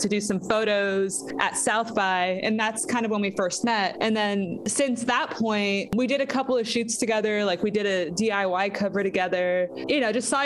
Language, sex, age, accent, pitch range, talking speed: English, female, 20-39, American, 190-225 Hz, 220 wpm